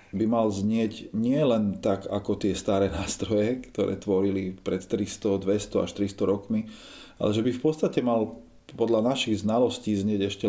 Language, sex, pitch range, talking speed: Slovak, male, 95-105 Hz, 160 wpm